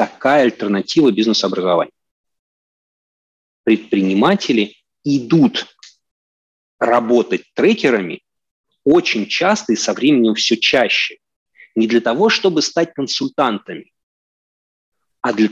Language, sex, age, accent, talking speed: Russian, male, 30-49, native, 85 wpm